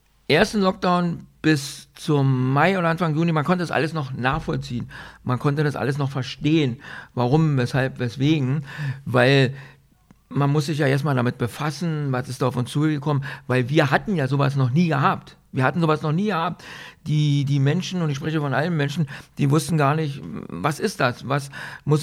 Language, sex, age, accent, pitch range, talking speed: German, male, 60-79, German, 125-155 Hz, 190 wpm